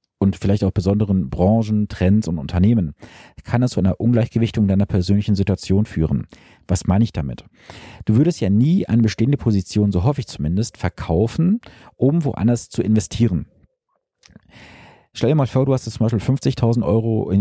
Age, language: 40-59, German